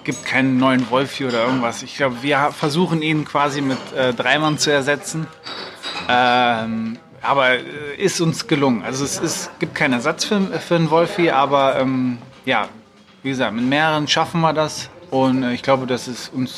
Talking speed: 175 wpm